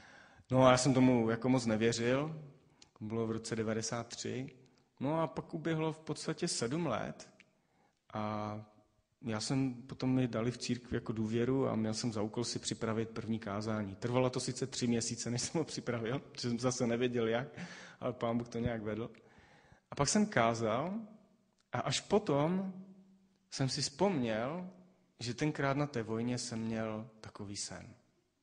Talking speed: 165 wpm